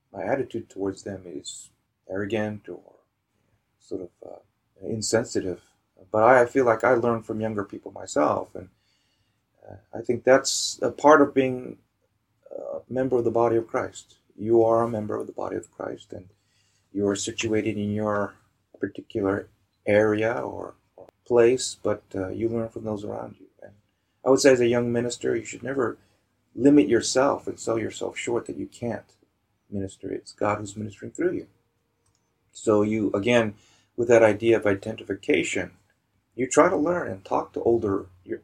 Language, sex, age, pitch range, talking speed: English, male, 30-49, 100-120 Hz, 170 wpm